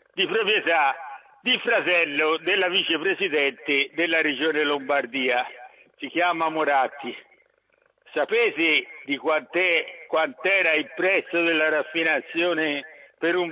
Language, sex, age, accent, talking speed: Italian, male, 60-79, native, 100 wpm